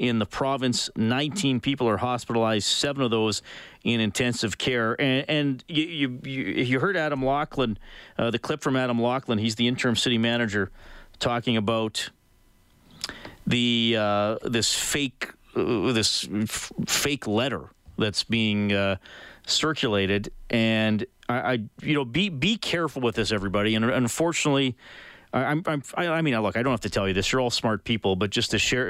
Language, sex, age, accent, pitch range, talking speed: English, male, 40-59, American, 105-125 Hz, 165 wpm